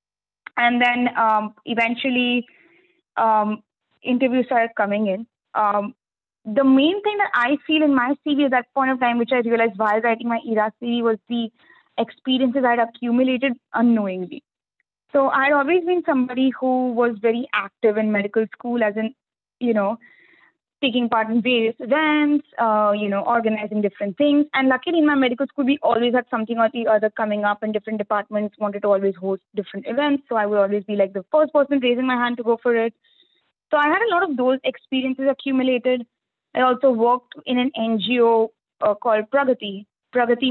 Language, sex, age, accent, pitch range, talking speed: English, female, 20-39, Indian, 215-265 Hz, 185 wpm